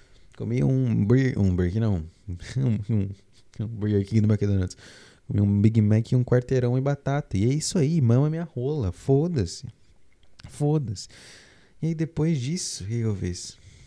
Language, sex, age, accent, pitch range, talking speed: Portuguese, male, 20-39, Brazilian, 95-120 Hz, 160 wpm